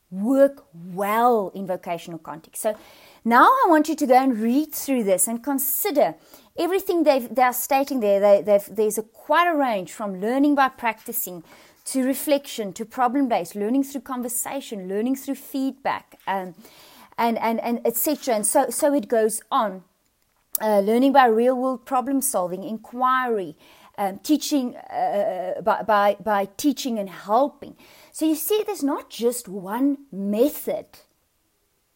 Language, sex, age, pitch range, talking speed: English, female, 30-49, 210-280 Hz, 150 wpm